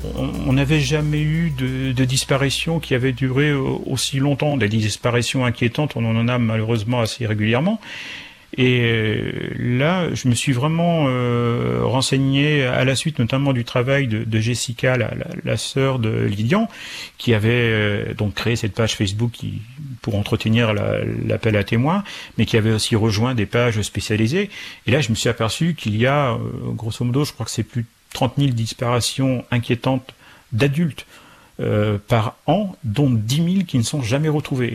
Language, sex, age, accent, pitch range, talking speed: French, male, 40-59, French, 110-135 Hz, 170 wpm